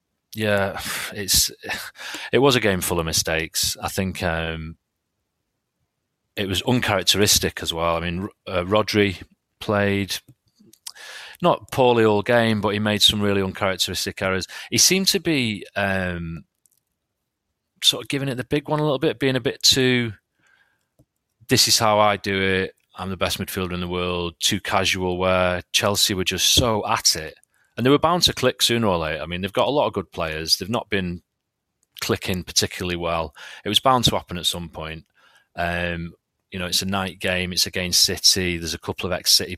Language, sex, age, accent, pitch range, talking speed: English, male, 30-49, British, 90-110 Hz, 185 wpm